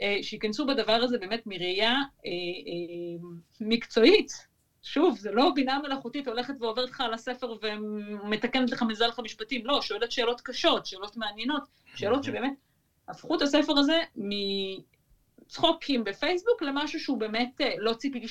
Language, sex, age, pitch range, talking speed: Hebrew, female, 30-49, 195-275 Hz, 135 wpm